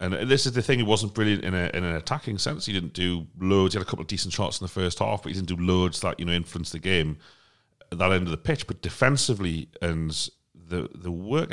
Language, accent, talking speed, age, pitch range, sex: English, British, 270 wpm, 30-49, 80-105 Hz, male